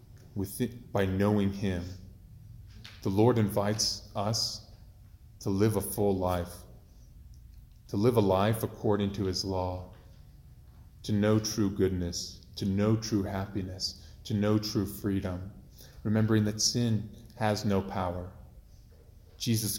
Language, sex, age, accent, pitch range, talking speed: English, male, 30-49, American, 95-110 Hz, 120 wpm